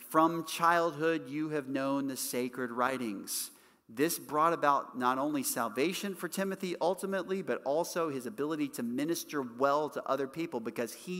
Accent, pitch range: American, 125-170 Hz